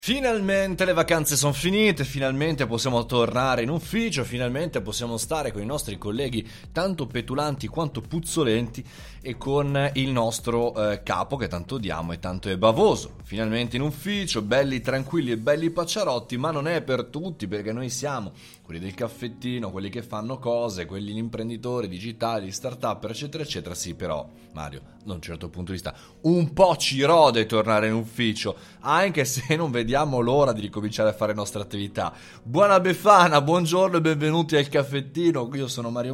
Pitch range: 105-145 Hz